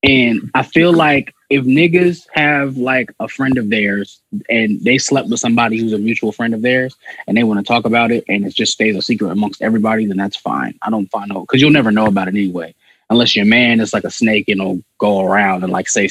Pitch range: 105-135 Hz